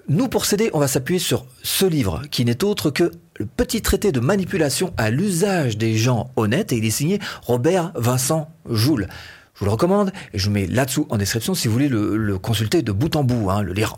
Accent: French